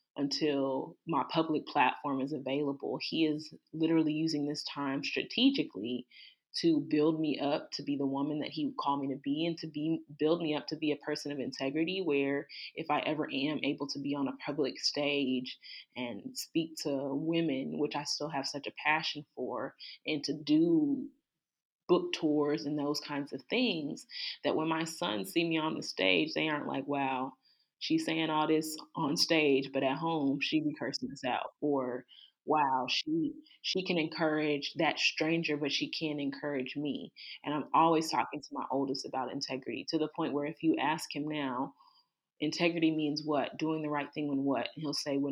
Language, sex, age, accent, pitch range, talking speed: English, female, 20-39, American, 140-160 Hz, 195 wpm